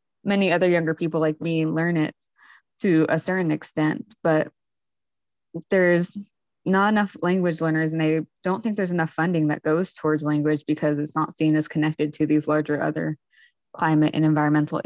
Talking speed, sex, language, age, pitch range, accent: 170 wpm, female, English, 20-39, 155-175 Hz, American